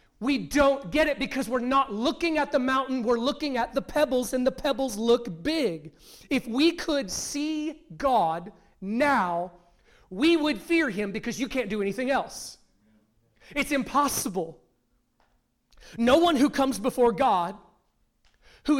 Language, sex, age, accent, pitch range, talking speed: English, male, 30-49, American, 200-260 Hz, 145 wpm